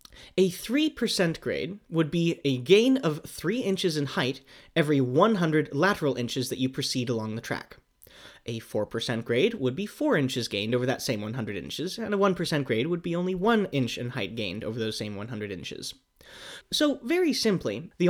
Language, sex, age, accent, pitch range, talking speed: English, male, 20-39, American, 125-185 Hz, 185 wpm